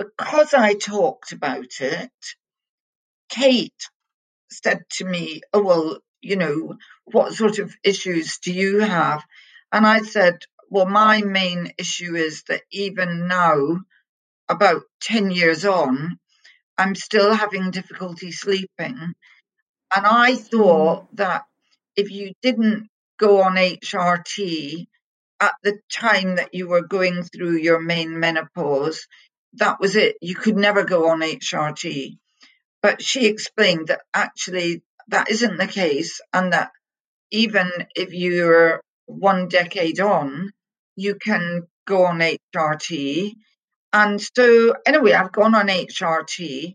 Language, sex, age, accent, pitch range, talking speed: English, female, 50-69, British, 175-215 Hz, 125 wpm